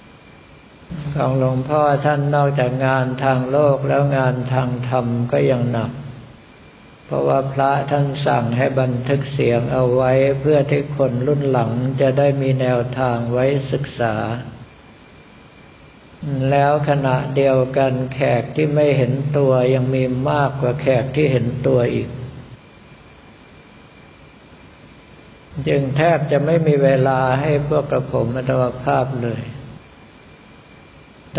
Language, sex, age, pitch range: Thai, male, 60-79, 125-140 Hz